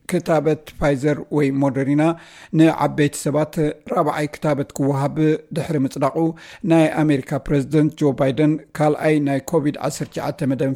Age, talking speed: 60-79, 125 wpm